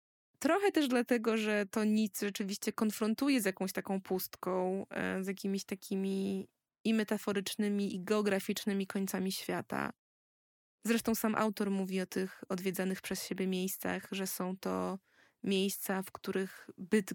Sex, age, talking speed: female, 20-39, 135 wpm